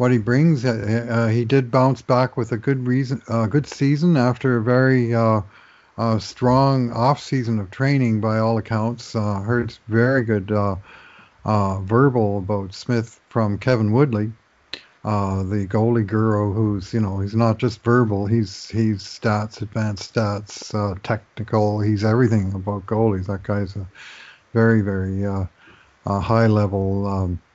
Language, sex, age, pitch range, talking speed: English, male, 50-69, 105-120 Hz, 155 wpm